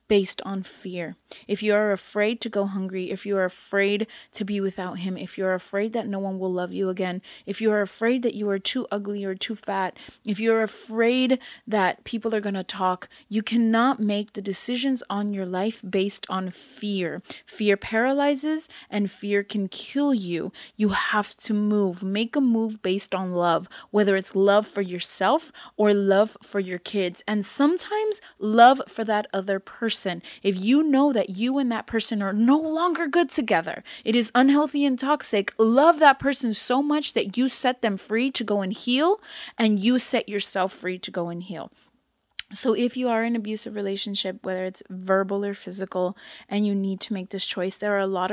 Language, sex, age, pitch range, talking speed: English, female, 20-39, 190-230 Hz, 195 wpm